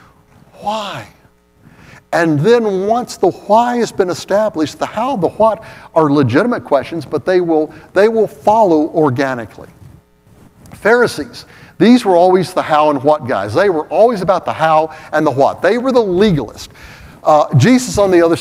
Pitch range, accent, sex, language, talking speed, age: 150-225 Hz, American, male, English, 165 wpm, 60-79